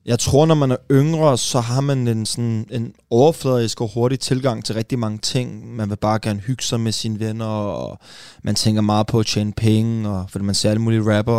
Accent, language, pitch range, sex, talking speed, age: native, Danish, 110-135 Hz, male, 220 wpm, 20-39